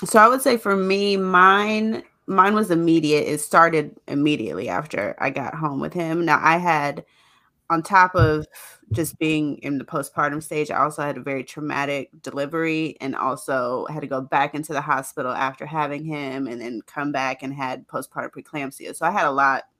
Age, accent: 30-49, American